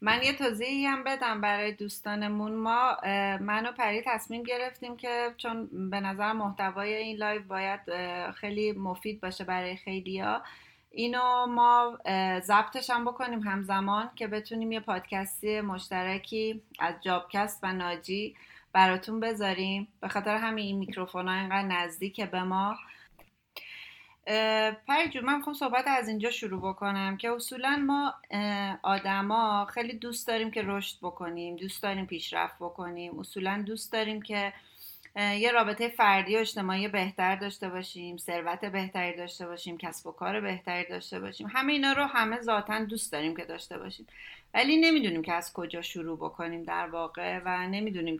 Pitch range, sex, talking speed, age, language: 185-225 Hz, female, 145 wpm, 30-49, Persian